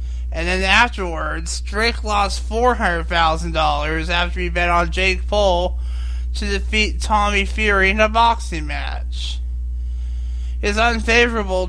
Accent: American